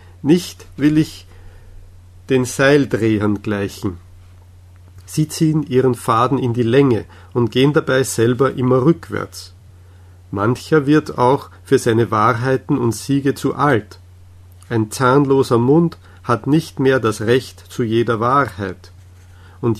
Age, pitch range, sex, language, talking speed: 50-69, 95-135 Hz, male, German, 125 wpm